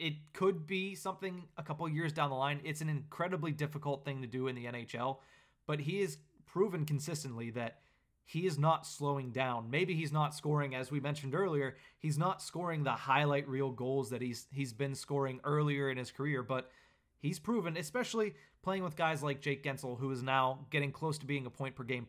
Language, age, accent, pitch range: English, 30-49, American, 135-160 Hz